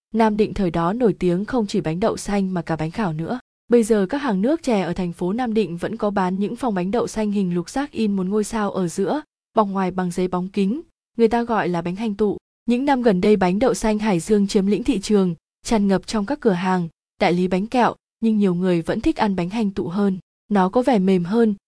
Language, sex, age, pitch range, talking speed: Vietnamese, female, 20-39, 190-225 Hz, 265 wpm